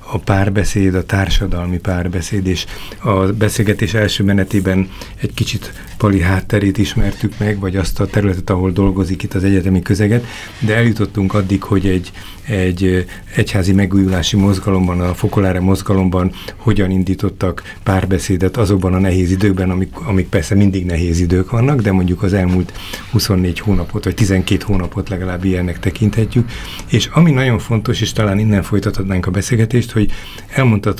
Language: Hungarian